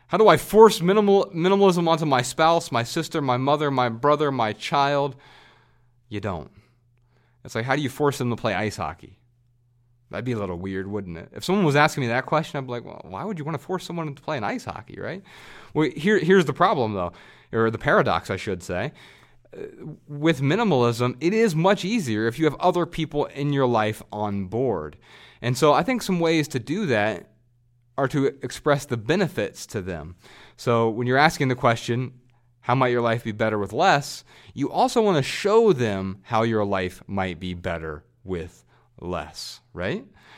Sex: male